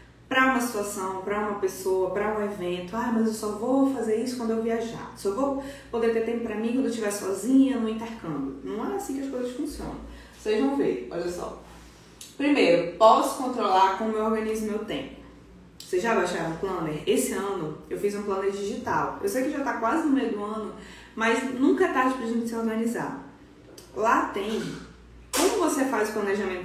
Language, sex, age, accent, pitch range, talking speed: Portuguese, female, 20-39, Brazilian, 190-255 Hz, 200 wpm